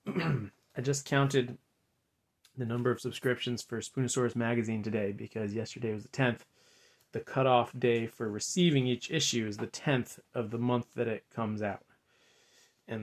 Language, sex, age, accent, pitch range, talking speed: English, male, 30-49, American, 110-125 Hz, 155 wpm